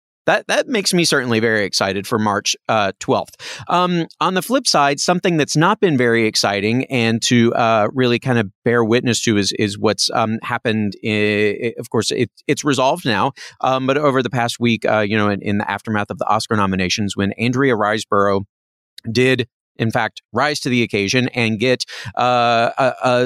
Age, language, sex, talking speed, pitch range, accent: 30-49, English, male, 195 wpm, 105-135 Hz, American